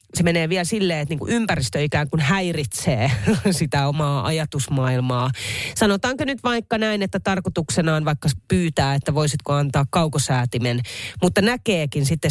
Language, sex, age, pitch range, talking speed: Finnish, female, 30-49, 130-195 Hz, 135 wpm